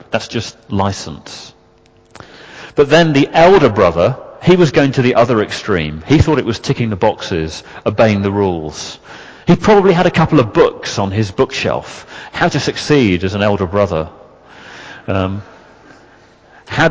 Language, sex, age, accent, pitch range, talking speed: English, male, 40-59, British, 100-145 Hz, 155 wpm